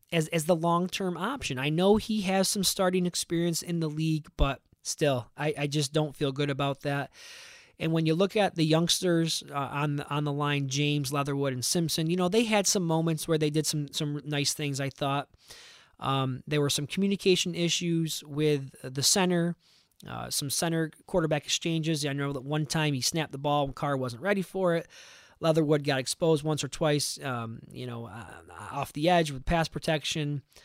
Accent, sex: American, male